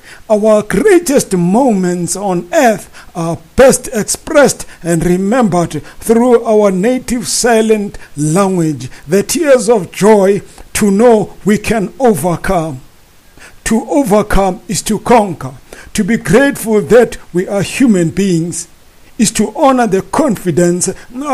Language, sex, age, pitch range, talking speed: English, male, 50-69, 175-230 Hz, 120 wpm